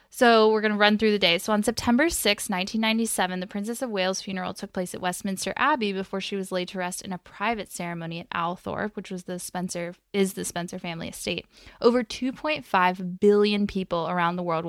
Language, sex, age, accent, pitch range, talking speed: English, female, 10-29, American, 180-210 Hz, 210 wpm